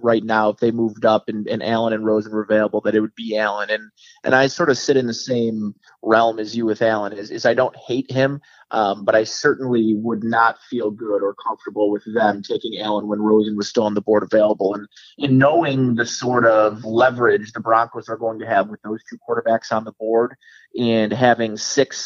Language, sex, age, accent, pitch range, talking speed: English, male, 30-49, American, 110-125 Hz, 225 wpm